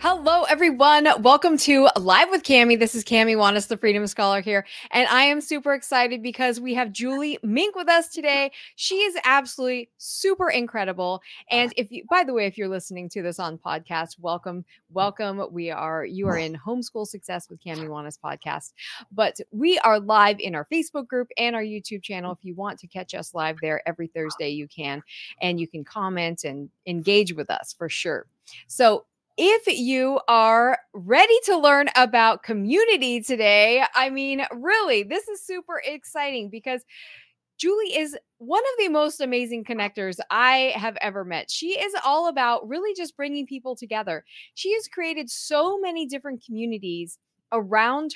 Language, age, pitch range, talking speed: English, 30-49, 195-295 Hz, 175 wpm